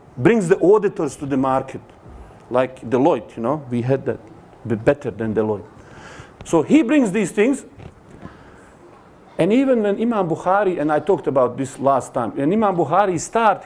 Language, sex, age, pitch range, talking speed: English, male, 40-59, 135-225 Hz, 165 wpm